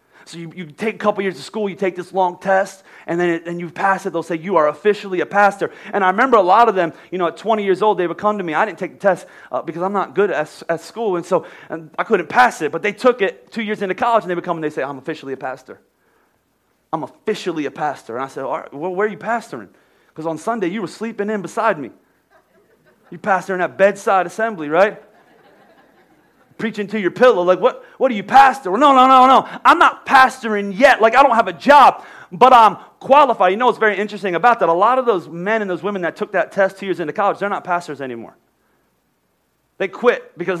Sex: male